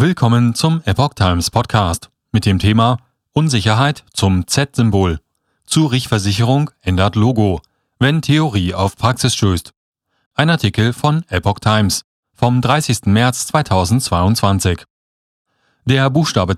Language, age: German, 40-59